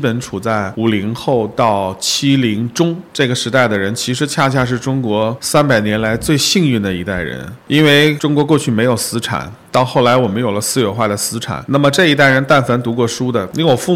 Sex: male